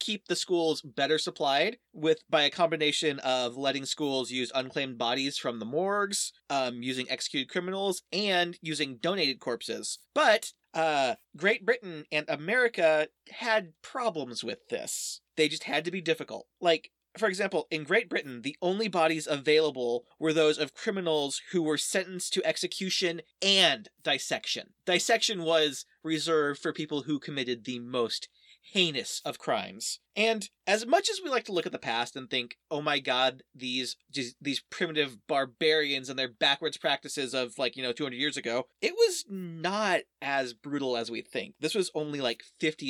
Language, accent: English, American